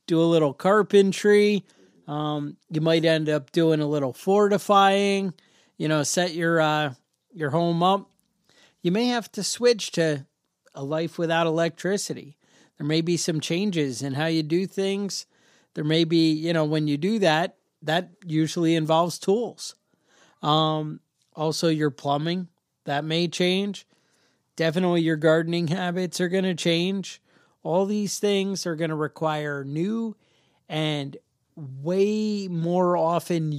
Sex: male